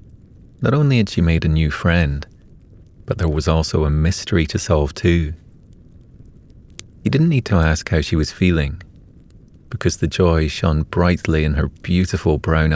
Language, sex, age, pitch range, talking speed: English, male, 30-49, 80-95 Hz, 165 wpm